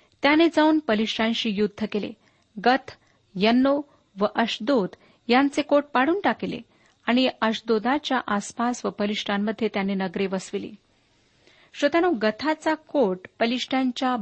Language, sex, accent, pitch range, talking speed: Marathi, female, native, 205-275 Hz, 105 wpm